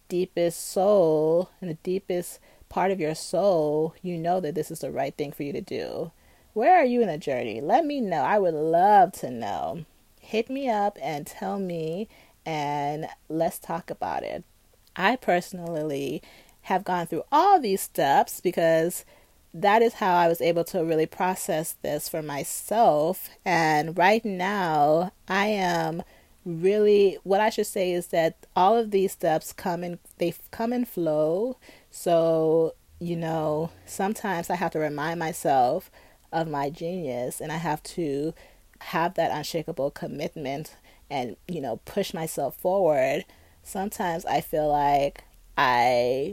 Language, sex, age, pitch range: English, female, 30-49, 155-195 Hz